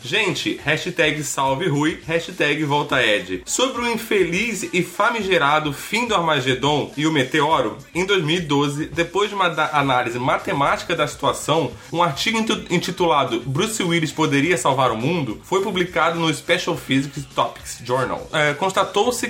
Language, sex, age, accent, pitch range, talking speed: Portuguese, male, 20-39, Brazilian, 140-180 Hz, 145 wpm